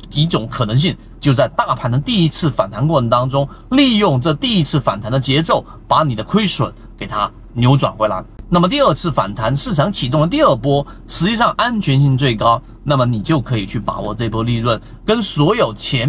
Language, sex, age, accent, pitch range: Chinese, male, 30-49, native, 110-150 Hz